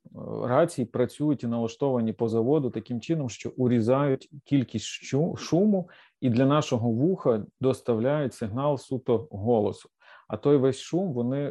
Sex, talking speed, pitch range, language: male, 130 wpm, 115-135 Hz, Ukrainian